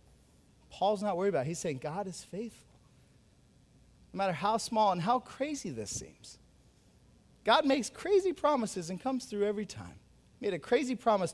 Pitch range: 125-180 Hz